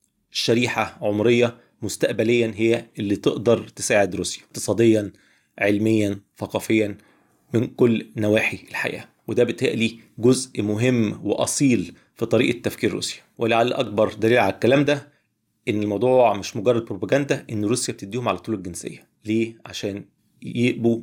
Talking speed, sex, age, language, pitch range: 125 wpm, male, 30-49, Arabic, 105-120 Hz